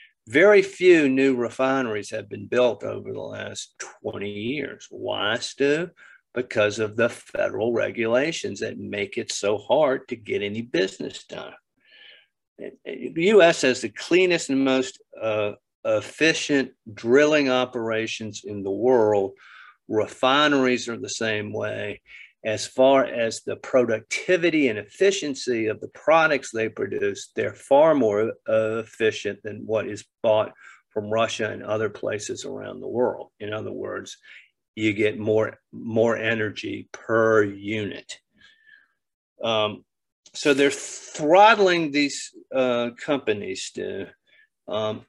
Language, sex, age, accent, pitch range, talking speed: English, male, 50-69, American, 110-155 Hz, 125 wpm